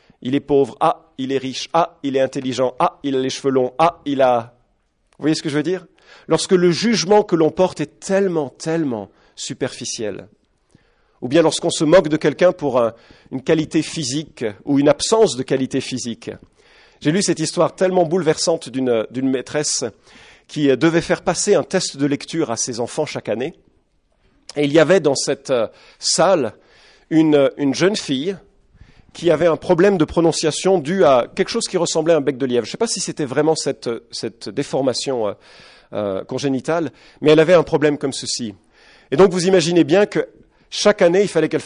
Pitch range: 135-180 Hz